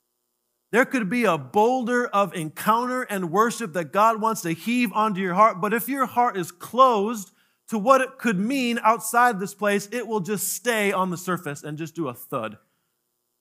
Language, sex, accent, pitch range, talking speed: English, male, American, 115-195 Hz, 190 wpm